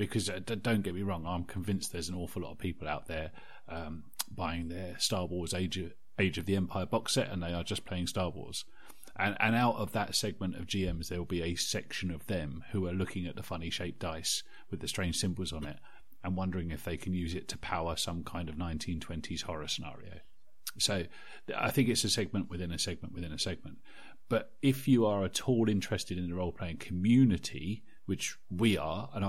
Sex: male